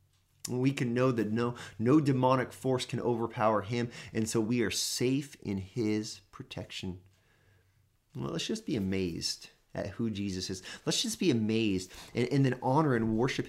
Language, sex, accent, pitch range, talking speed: English, male, American, 100-125 Hz, 170 wpm